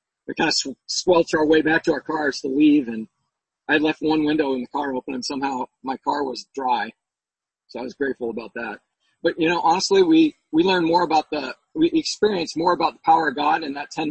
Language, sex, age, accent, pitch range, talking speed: English, male, 40-59, American, 140-170 Hz, 240 wpm